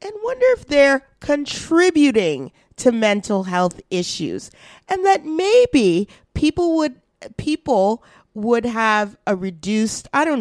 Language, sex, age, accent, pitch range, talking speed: English, female, 40-59, American, 190-280 Hz, 120 wpm